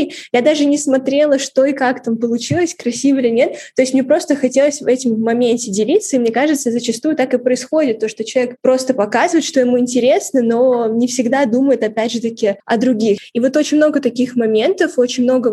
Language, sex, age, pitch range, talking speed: Russian, female, 10-29, 230-275 Hz, 200 wpm